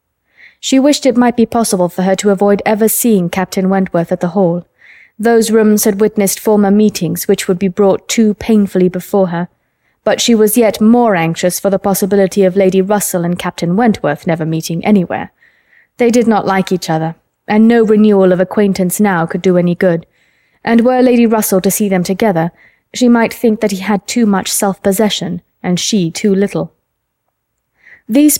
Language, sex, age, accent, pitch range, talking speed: English, female, 20-39, British, 180-220 Hz, 185 wpm